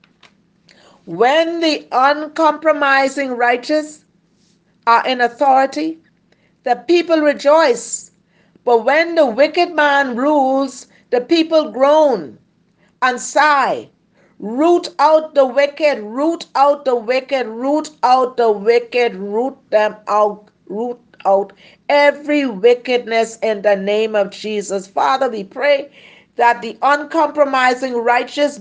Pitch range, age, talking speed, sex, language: 225-290 Hz, 50-69, 110 wpm, female, English